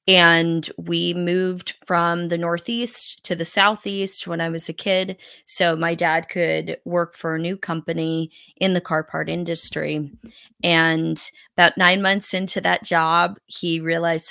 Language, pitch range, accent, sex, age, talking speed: English, 160-180 Hz, American, female, 20-39, 155 wpm